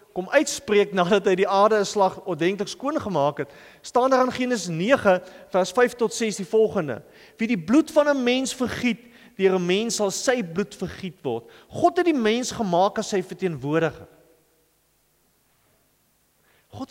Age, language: 40-59, English